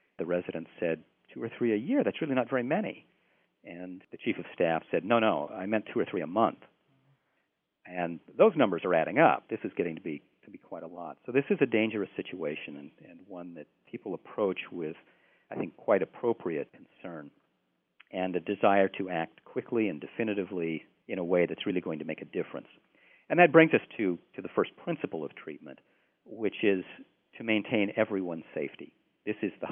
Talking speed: 200 wpm